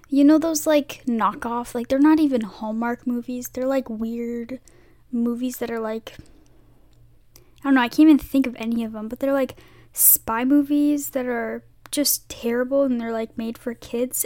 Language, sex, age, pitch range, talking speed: English, female, 10-29, 240-290 Hz, 185 wpm